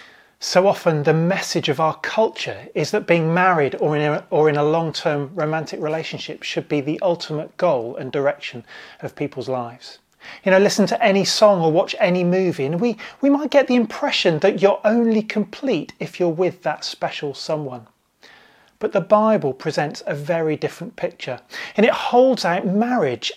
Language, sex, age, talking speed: English, male, 30-49, 175 wpm